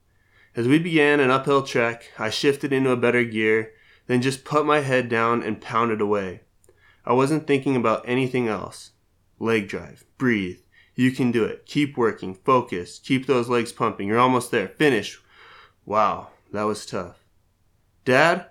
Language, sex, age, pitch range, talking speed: English, male, 20-39, 105-135 Hz, 160 wpm